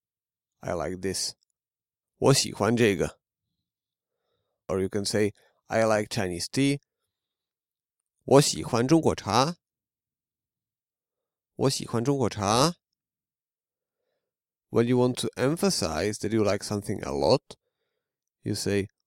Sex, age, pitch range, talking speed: male, 30-49, 105-140 Hz, 80 wpm